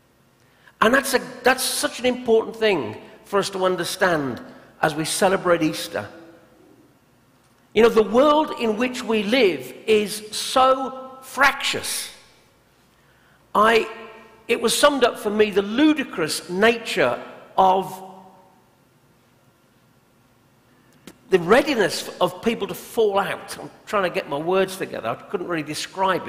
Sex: male